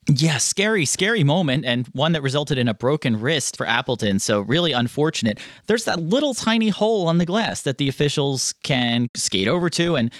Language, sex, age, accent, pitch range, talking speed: English, male, 30-49, American, 125-165 Hz, 195 wpm